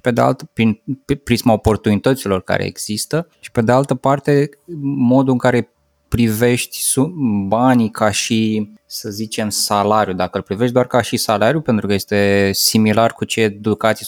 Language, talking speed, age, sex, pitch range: Romanian, 145 wpm, 20-39, male, 105-125 Hz